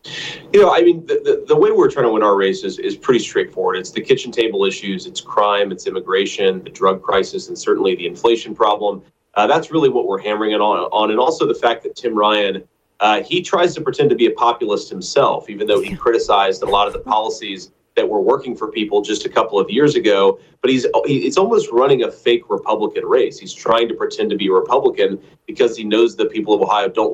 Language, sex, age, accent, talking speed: English, male, 30-49, American, 235 wpm